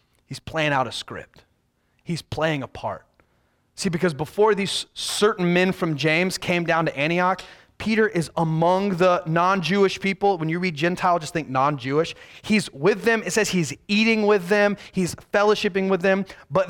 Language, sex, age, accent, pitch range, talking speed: English, male, 30-49, American, 145-200 Hz, 180 wpm